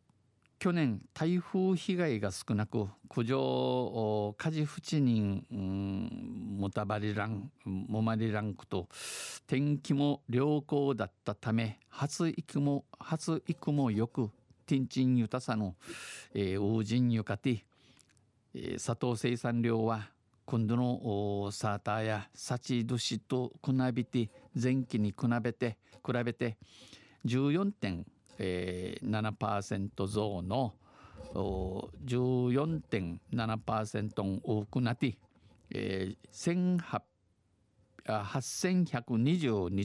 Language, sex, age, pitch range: Japanese, male, 50-69, 105-130 Hz